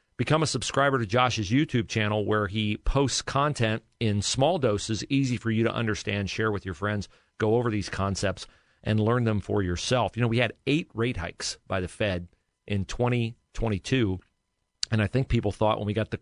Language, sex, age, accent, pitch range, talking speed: English, male, 40-59, American, 100-125 Hz, 195 wpm